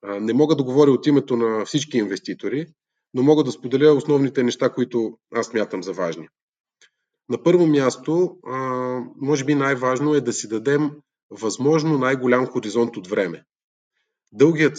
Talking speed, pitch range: 145 wpm, 120-150 Hz